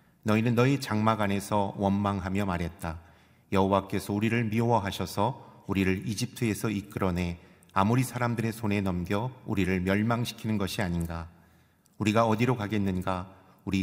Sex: male